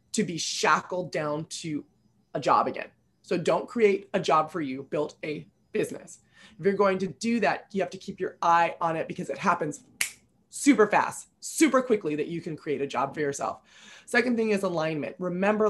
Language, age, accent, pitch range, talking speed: English, 20-39, American, 165-210 Hz, 200 wpm